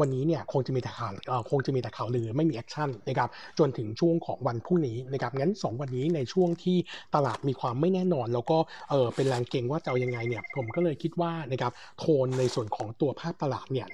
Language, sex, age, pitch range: Thai, male, 60-79, 125-165 Hz